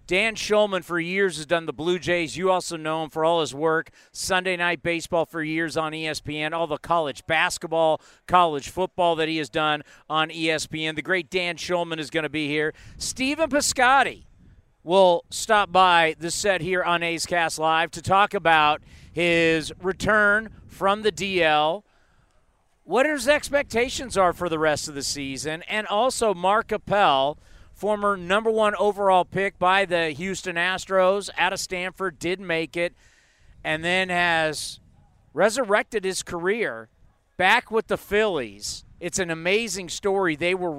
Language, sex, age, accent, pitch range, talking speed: English, male, 40-59, American, 155-190 Hz, 160 wpm